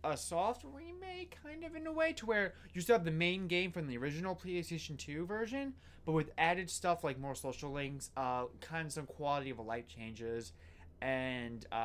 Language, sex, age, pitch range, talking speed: English, male, 20-39, 115-170 Hz, 200 wpm